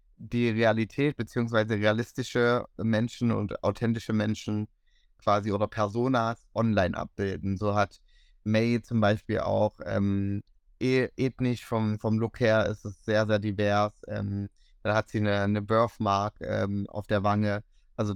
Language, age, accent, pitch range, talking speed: German, 30-49, German, 100-115 Hz, 140 wpm